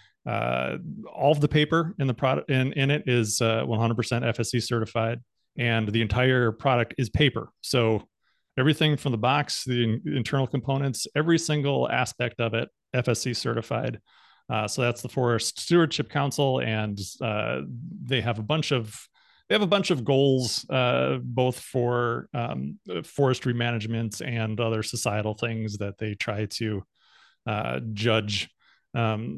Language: English